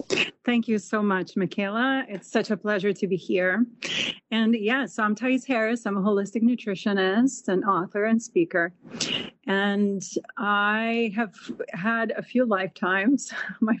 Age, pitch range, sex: 40-59, 185-225 Hz, female